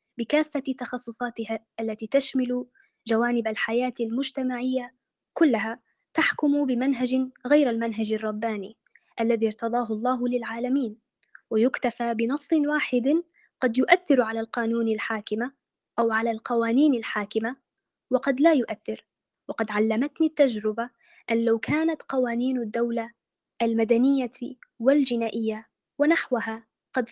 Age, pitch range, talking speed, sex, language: 20-39, 230-270 Hz, 95 wpm, female, Arabic